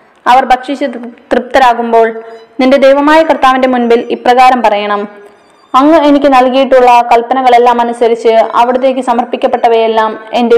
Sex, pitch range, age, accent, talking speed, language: female, 220-245 Hz, 20-39, native, 95 wpm, Malayalam